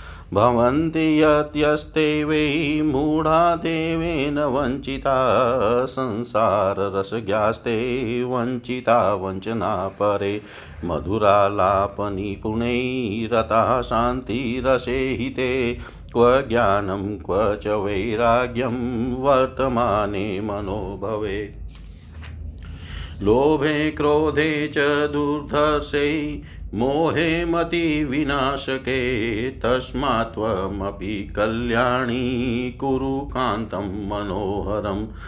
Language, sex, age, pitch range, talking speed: Hindi, male, 50-69, 100-130 Hz, 40 wpm